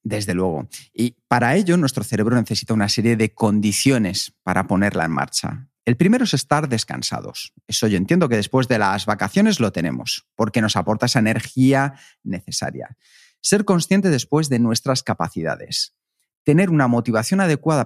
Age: 40-59